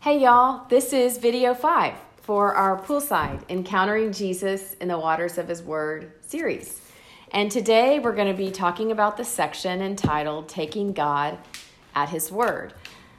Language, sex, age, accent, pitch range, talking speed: English, female, 40-59, American, 165-205 Hz, 155 wpm